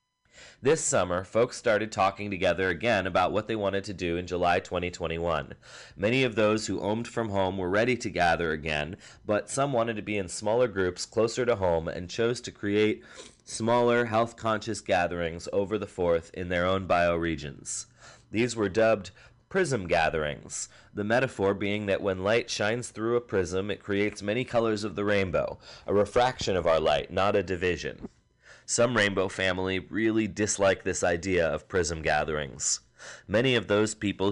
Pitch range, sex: 90-110 Hz, male